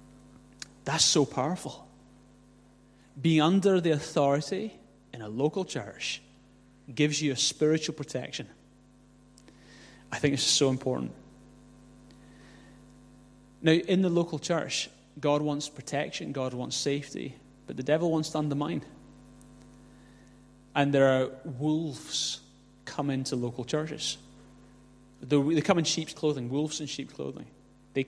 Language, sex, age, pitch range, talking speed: English, male, 30-49, 130-155 Hz, 120 wpm